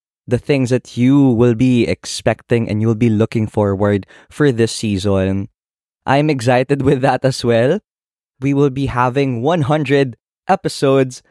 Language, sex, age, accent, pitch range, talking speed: Filipino, male, 20-39, native, 105-140 Hz, 145 wpm